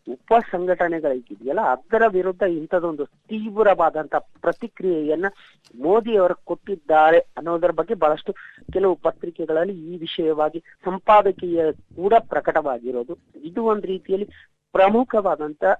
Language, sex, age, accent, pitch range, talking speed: Kannada, female, 30-49, native, 145-190 Hz, 90 wpm